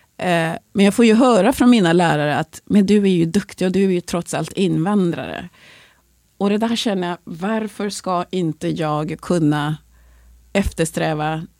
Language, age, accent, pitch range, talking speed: English, 30-49, Swedish, 160-210 Hz, 165 wpm